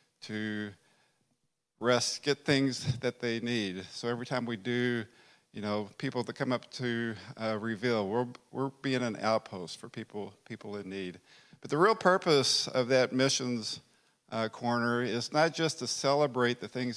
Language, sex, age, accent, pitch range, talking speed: English, male, 50-69, American, 110-130 Hz, 165 wpm